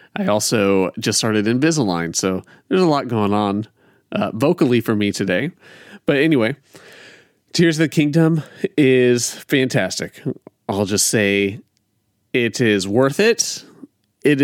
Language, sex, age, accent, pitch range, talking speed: English, male, 30-49, American, 105-135 Hz, 135 wpm